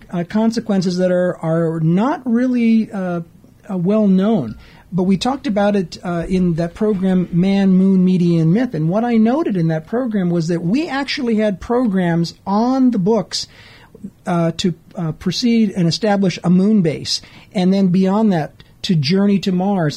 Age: 50-69